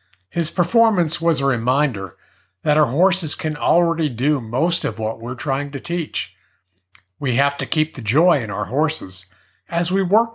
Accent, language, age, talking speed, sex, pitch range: American, English, 50-69, 175 wpm, male, 100-145 Hz